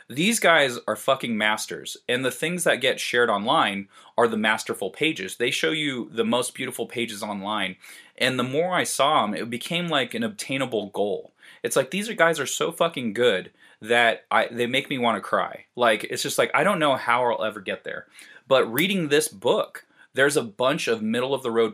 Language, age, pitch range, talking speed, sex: English, 30-49, 110-155 Hz, 200 wpm, male